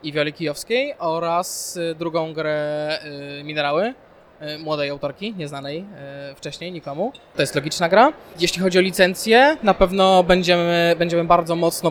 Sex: male